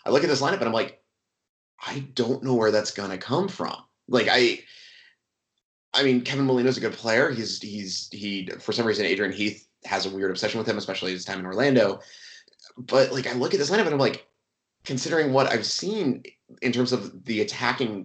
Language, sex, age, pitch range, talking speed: English, male, 30-49, 95-130 Hz, 210 wpm